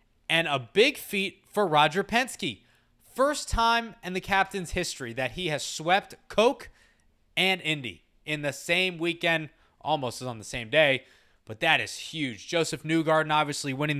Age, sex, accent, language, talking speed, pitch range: 20-39, male, American, English, 160 wpm, 125-165 Hz